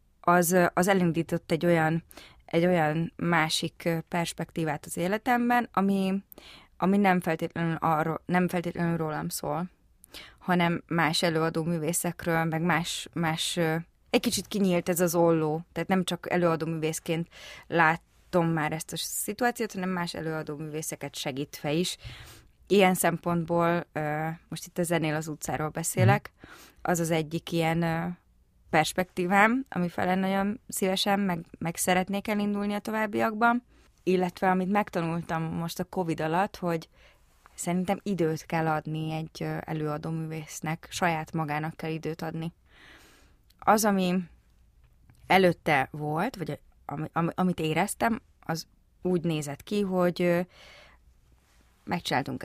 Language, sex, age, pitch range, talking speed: Hungarian, female, 20-39, 160-185 Hz, 120 wpm